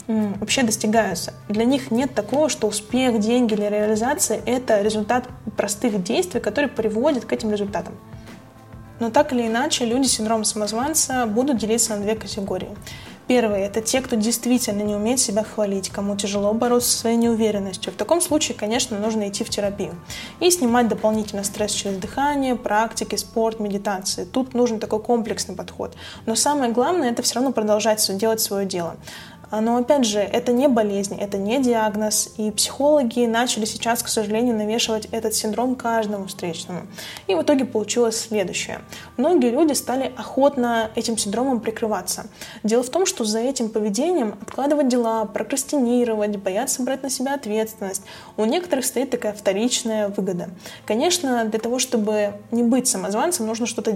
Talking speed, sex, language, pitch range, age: 160 wpm, female, Russian, 210-245 Hz, 20-39